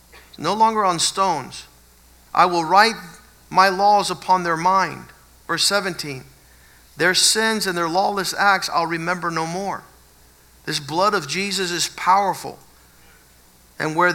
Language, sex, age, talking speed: Spanish, male, 50-69, 135 wpm